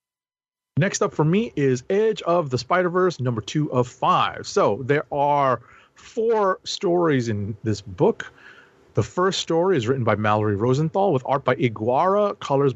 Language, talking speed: English, 160 wpm